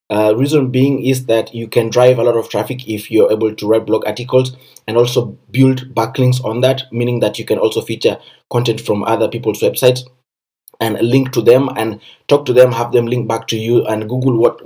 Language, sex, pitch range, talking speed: English, male, 115-130 Hz, 215 wpm